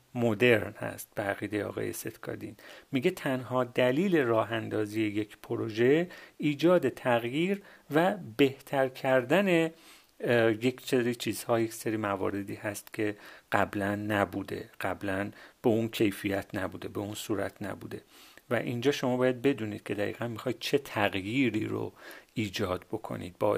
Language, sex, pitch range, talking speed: Persian, male, 110-140 Hz, 120 wpm